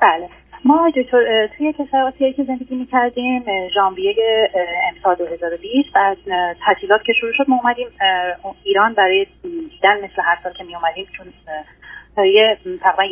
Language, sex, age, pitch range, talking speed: Persian, female, 30-49, 190-255 Hz, 135 wpm